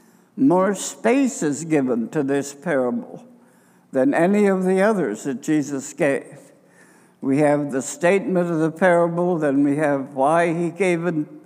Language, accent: English, American